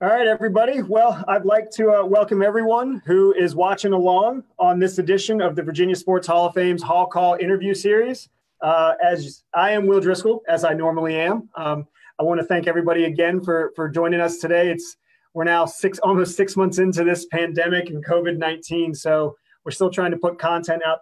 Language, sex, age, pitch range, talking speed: English, male, 30-49, 160-195 Hz, 200 wpm